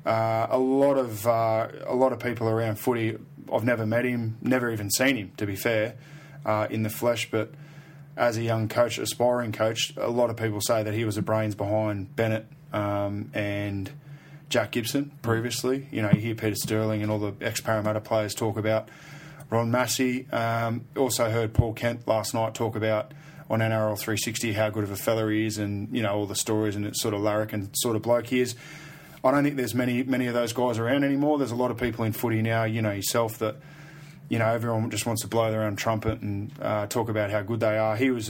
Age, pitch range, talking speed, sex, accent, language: 20-39, 110-130 Hz, 230 wpm, male, Australian, English